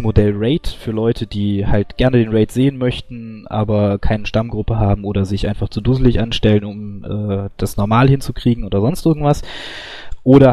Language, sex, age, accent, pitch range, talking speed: German, male, 20-39, German, 100-125 Hz, 170 wpm